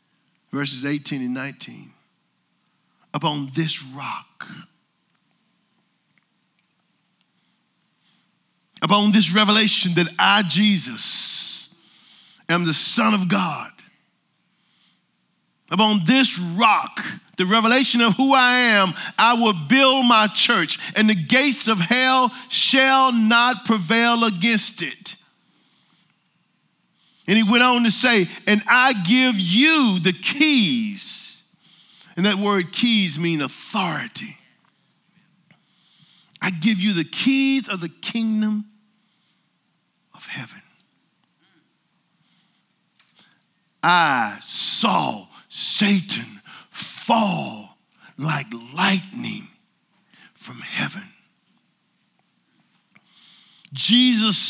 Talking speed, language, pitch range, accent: 85 wpm, English, 185-225 Hz, American